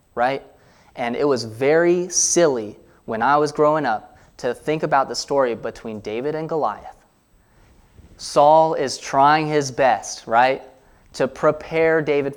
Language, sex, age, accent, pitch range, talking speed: English, male, 20-39, American, 120-155 Hz, 140 wpm